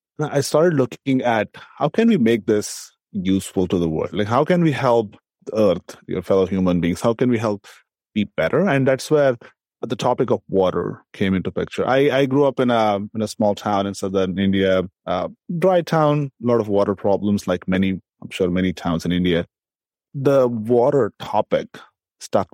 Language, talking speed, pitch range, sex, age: English, 195 wpm, 100-125 Hz, male, 30-49